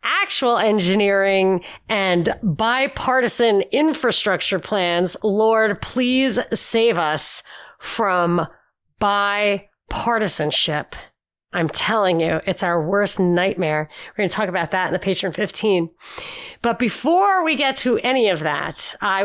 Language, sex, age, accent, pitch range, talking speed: English, female, 30-49, American, 180-230 Hz, 120 wpm